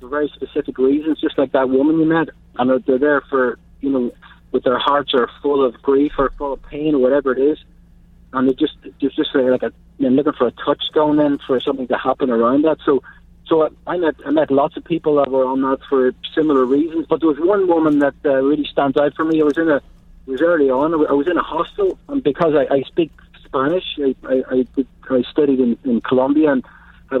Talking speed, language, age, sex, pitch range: 235 wpm, English, 40-59, male, 130-155 Hz